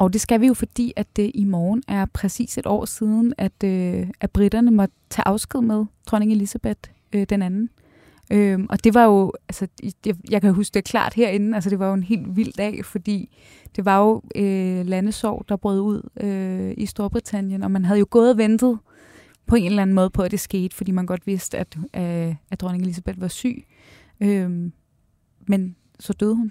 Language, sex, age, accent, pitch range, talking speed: Danish, female, 20-39, native, 190-220 Hz, 190 wpm